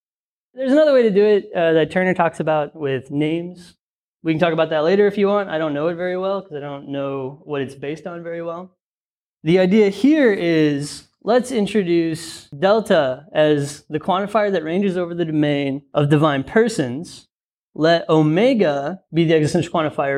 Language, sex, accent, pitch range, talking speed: English, male, American, 145-195 Hz, 185 wpm